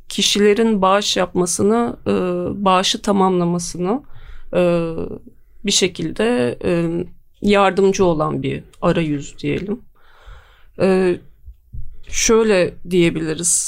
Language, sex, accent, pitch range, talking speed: Turkish, female, native, 170-205 Hz, 60 wpm